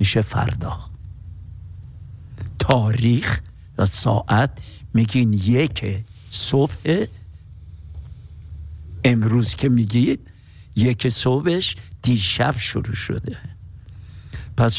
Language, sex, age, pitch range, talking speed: Persian, male, 60-79, 100-130 Hz, 70 wpm